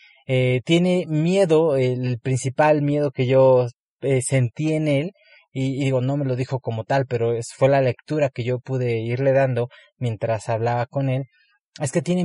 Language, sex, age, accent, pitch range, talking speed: Spanish, male, 30-49, Mexican, 120-145 Hz, 180 wpm